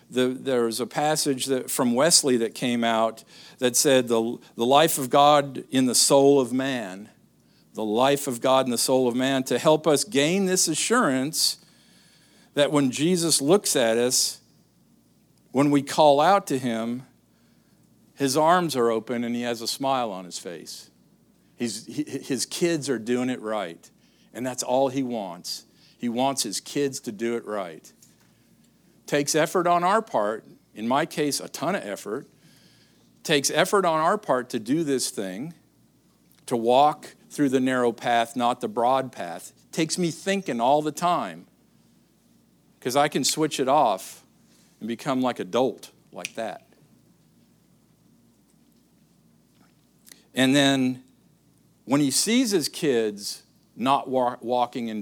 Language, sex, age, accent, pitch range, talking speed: English, male, 50-69, American, 120-150 Hz, 155 wpm